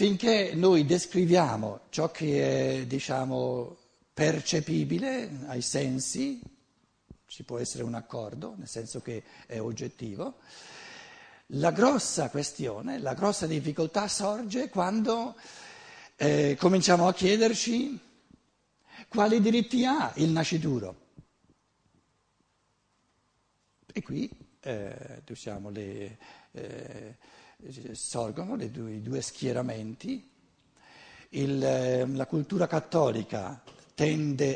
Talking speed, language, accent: 90 wpm, Italian, native